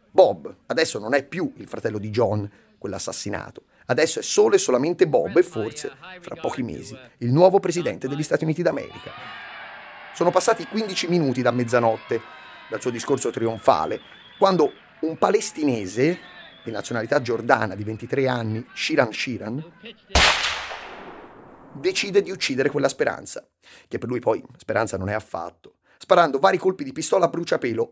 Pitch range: 120-165 Hz